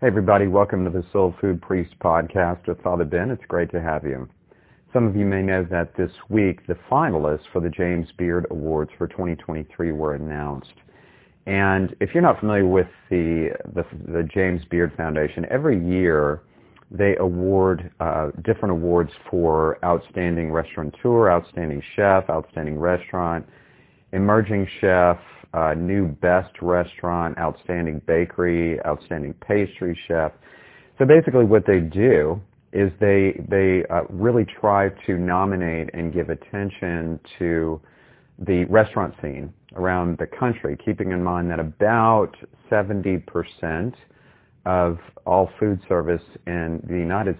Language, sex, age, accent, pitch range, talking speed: English, male, 40-59, American, 80-95 Hz, 140 wpm